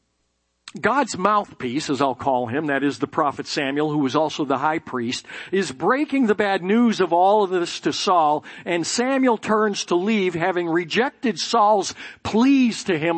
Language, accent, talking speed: English, American, 180 wpm